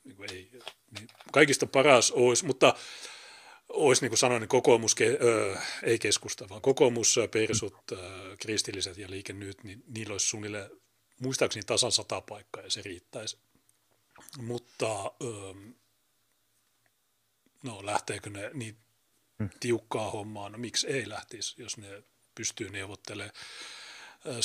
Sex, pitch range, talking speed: male, 100-130 Hz, 120 wpm